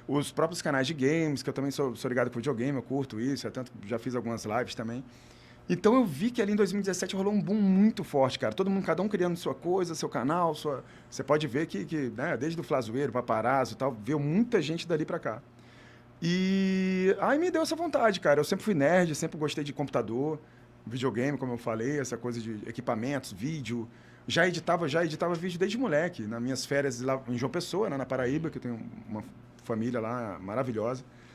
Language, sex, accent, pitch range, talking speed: Portuguese, male, Brazilian, 125-185 Hz, 210 wpm